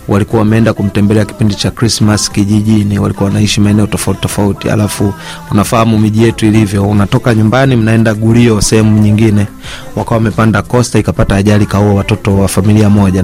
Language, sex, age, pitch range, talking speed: Swahili, male, 30-49, 105-120 Hz, 155 wpm